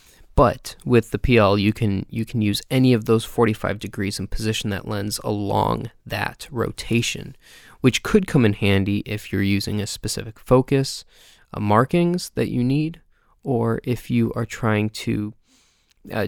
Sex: male